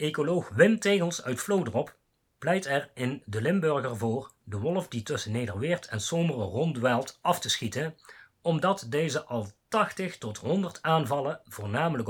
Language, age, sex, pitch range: Dutch, 40-59, male, 110-165 Hz